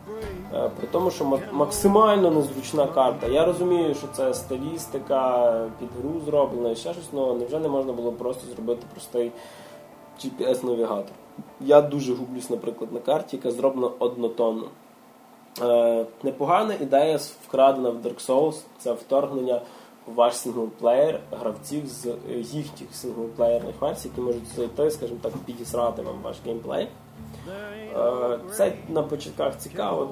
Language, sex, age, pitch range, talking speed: Russian, male, 20-39, 120-150 Hz, 125 wpm